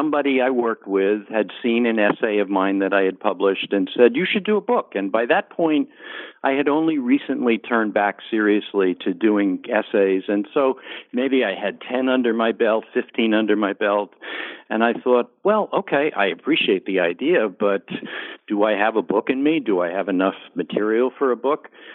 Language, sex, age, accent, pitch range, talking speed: English, male, 60-79, American, 100-135 Hz, 200 wpm